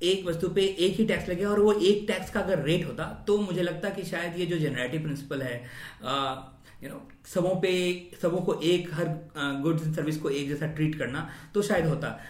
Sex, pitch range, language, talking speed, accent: male, 130-160 Hz, Hindi, 220 wpm, native